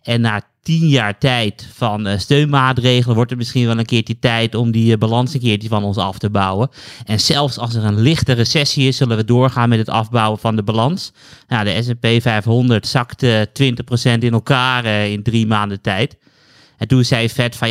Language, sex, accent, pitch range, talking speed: Dutch, male, Dutch, 110-130 Hz, 205 wpm